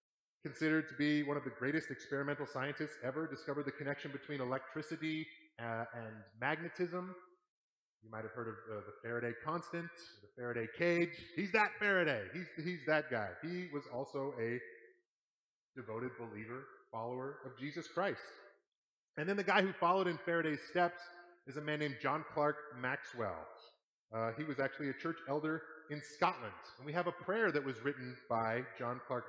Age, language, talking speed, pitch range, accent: 30-49, English, 170 wpm, 130-170 Hz, American